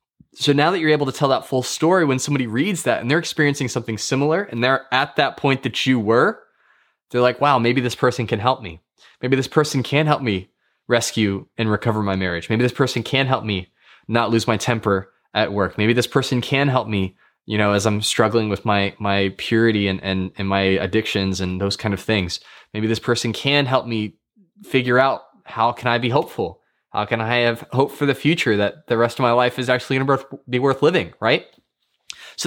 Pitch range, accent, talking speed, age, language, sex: 105-135 Hz, American, 220 wpm, 20-39, English, male